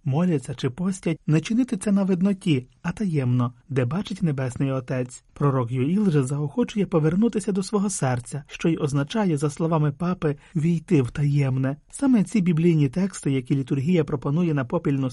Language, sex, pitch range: Ukrainian, male, 145-195 Hz